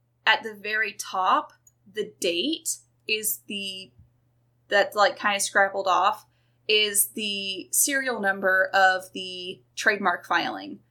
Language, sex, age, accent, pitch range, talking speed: English, female, 20-39, American, 125-205 Hz, 120 wpm